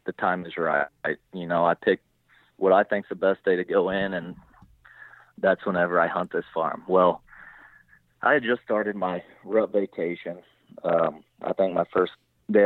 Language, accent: English, American